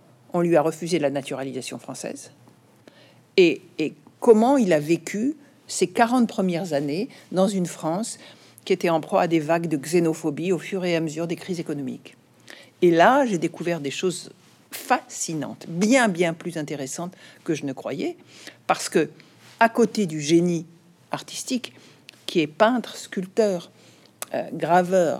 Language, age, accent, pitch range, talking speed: French, 50-69, French, 165-215 Hz, 150 wpm